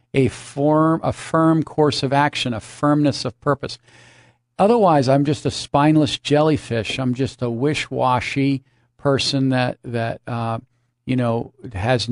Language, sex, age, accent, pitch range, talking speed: English, male, 50-69, American, 120-145 Hz, 145 wpm